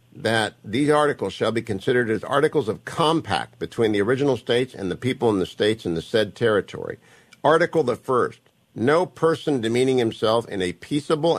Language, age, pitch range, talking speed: English, 50-69, 115-145 Hz, 180 wpm